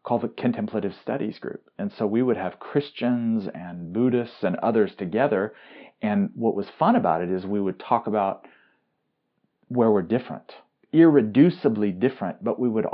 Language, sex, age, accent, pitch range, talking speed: English, male, 40-59, American, 100-135 Hz, 160 wpm